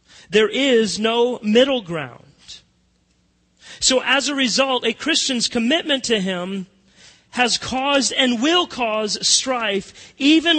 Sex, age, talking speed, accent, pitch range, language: male, 40-59, 120 wpm, American, 165-245 Hz, English